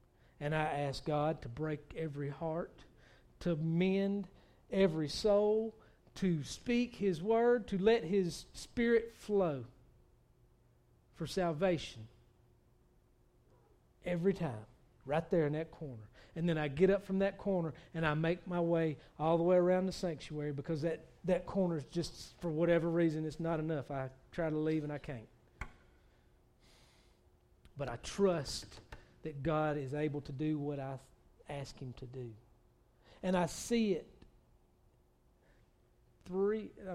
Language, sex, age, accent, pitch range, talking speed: English, male, 40-59, American, 135-185 Hz, 145 wpm